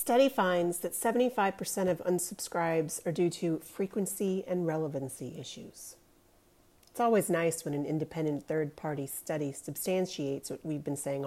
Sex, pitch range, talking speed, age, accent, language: female, 155-195 Hz, 140 wpm, 40-59, American, English